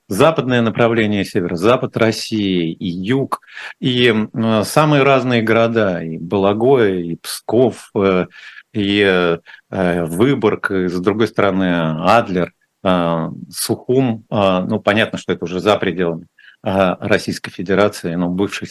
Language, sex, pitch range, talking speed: Russian, male, 100-135 Hz, 130 wpm